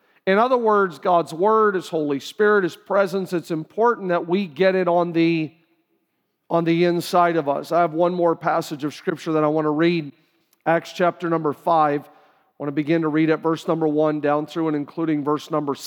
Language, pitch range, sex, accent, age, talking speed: English, 155-185 Hz, male, American, 40-59, 205 wpm